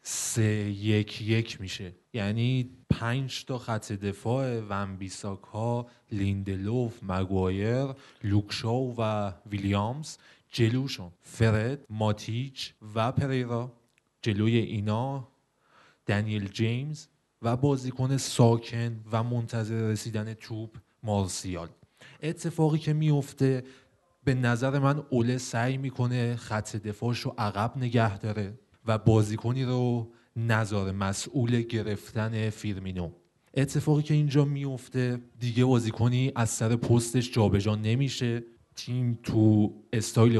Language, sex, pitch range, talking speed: Persian, male, 110-130 Hz, 100 wpm